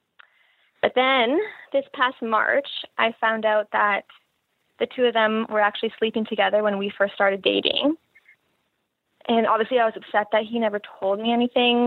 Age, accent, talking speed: 20-39, American, 165 wpm